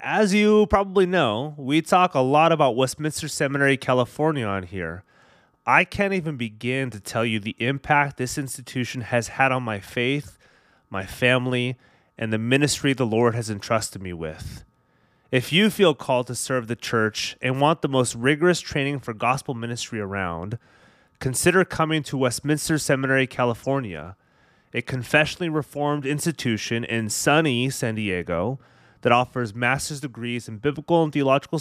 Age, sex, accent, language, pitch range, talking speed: 30-49, male, American, English, 115-150 Hz, 155 wpm